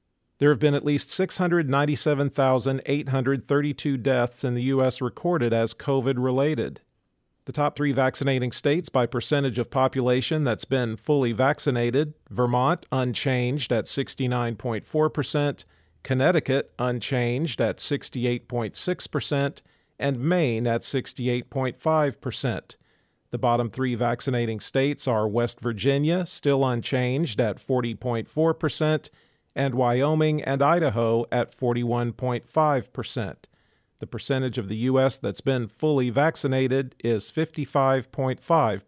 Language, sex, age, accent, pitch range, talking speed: English, male, 40-59, American, 120-145 Hz, 110 wpm